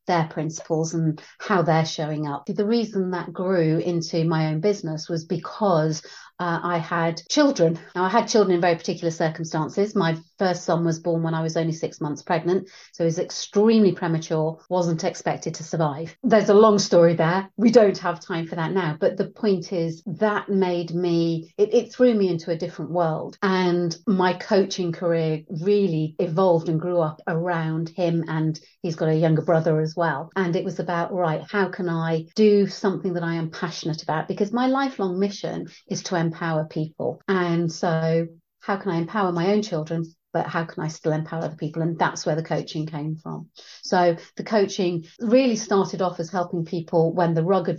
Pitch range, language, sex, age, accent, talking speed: 165-190 Hz, English, female, 40-59, British, 195 wpm